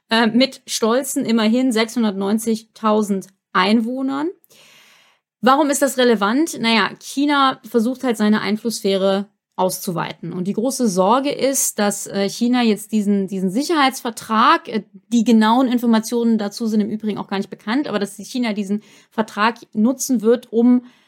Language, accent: German, German